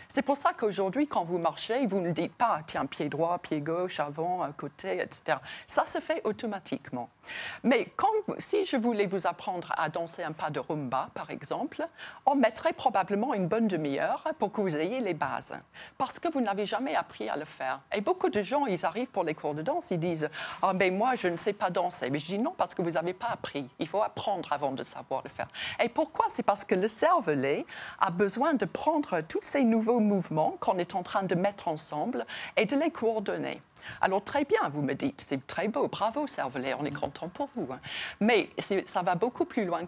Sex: female